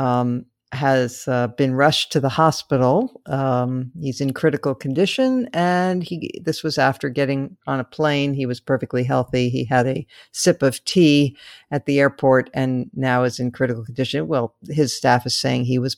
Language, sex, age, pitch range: English, female, 50-69, 130-160 Hz